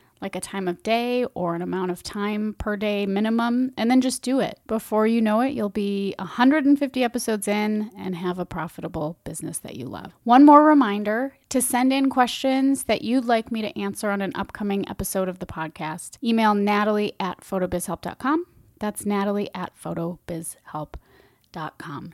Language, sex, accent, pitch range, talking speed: English, female, American, 190-255 Hz, 170 wpm